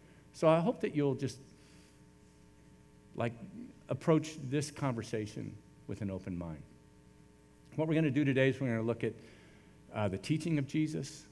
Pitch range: 100-145 Hz